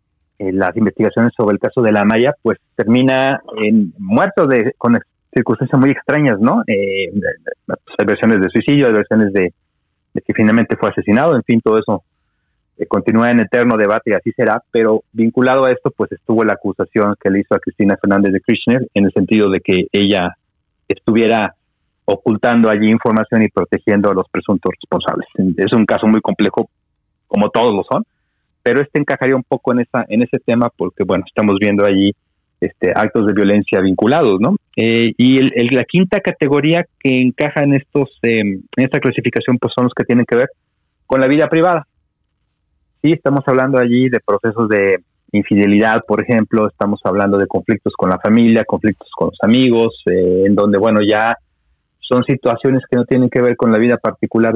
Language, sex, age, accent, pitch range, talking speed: Spanish, male, 30-49, Mexican, 100-130 Hz, 185 wpm